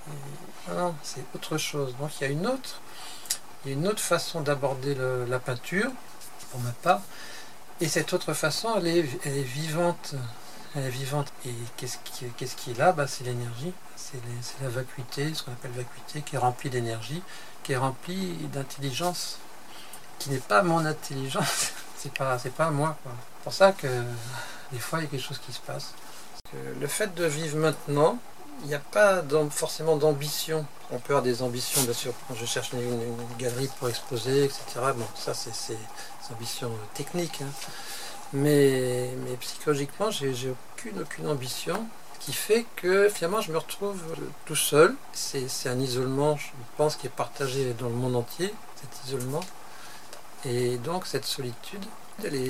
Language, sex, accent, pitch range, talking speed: French, male, French, 125-160 Hz, 180 wpm